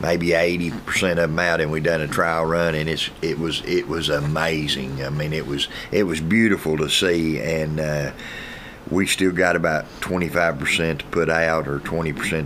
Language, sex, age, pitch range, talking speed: English, male, 50-69, 75-90 Hz, 200 wpm